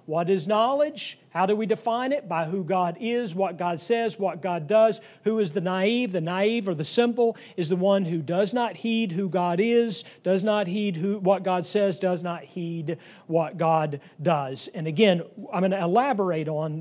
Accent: American